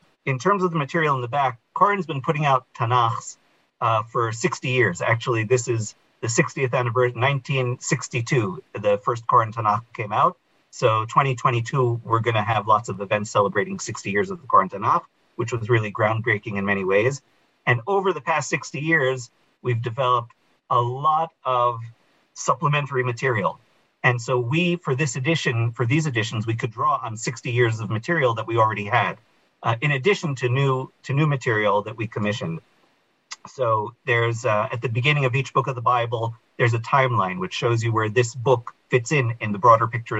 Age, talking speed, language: 40-59, 185 wpm, English